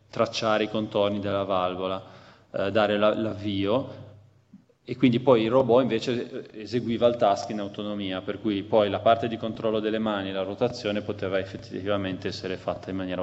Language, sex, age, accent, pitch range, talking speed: Italian, male, 20-39, native, 95-110 Hz, 160 wpm